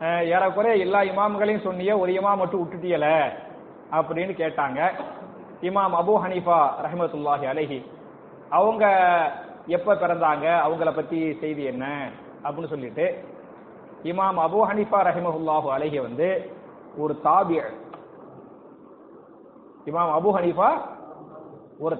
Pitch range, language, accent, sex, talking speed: 170-220 Hz, English, Indian, male, 100 wpm